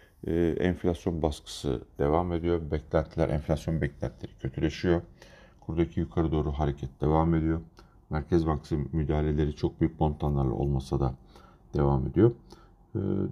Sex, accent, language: male, native, Turkish